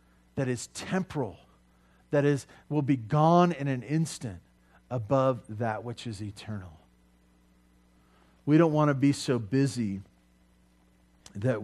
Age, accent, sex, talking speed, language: 50-69, American, male, 125 wpm, English